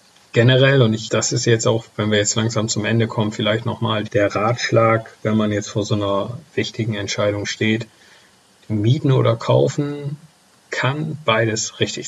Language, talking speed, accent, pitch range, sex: German, 165 wpm, German, 105-120 Hz, male